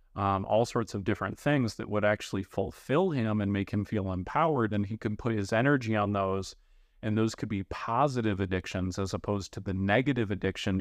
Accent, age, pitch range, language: American, 30-49, 100-120 Hz, English